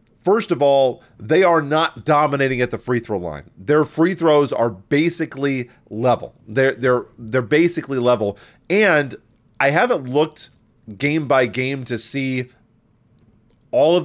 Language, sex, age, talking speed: English, male, 30-49, 140 wpm